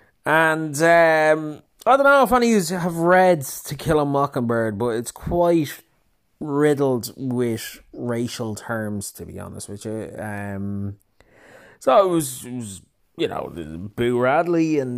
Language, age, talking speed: English, 20-39, 150 wpm